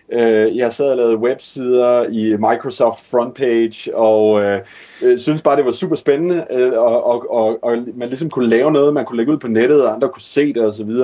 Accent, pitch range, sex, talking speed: native, 110-130 Hz, male, 205 wpm